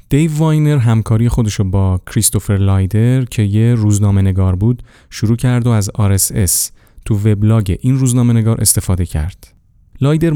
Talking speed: 135 wpm